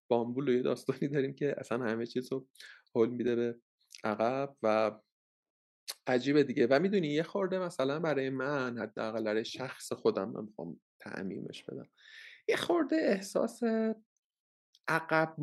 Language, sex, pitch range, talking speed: Persian, male, 125-170 Hz, 130 wpm